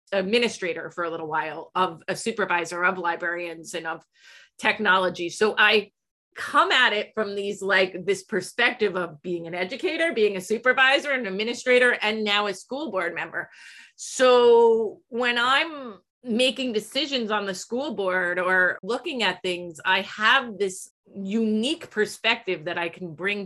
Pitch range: 170-220 Hz